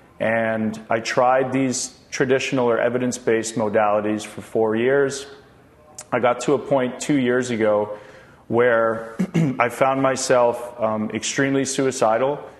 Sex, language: male, English